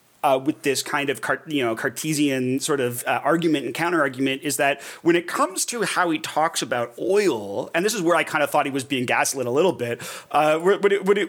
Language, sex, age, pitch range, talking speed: English, male, 30-49, 135-165 Hz, 230 wpm